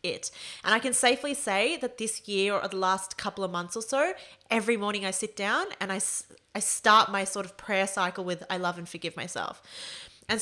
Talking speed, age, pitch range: 215 wpm, 20-39, 180-230 Hz